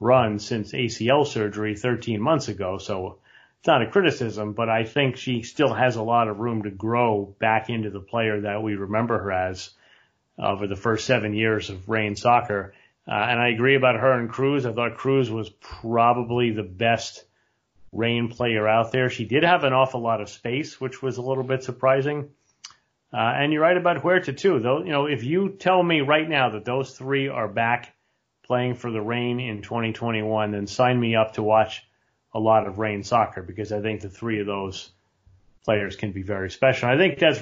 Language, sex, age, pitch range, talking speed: English, male, 40-59, 105-125 Hz, 205 wpm